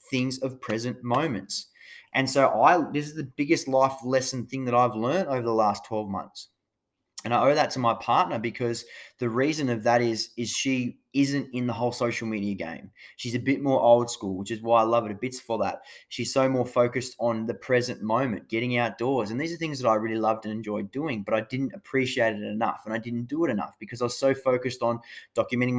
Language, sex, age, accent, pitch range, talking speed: English, male, 20-39, Australian, 115-135 Hz, 235 wpm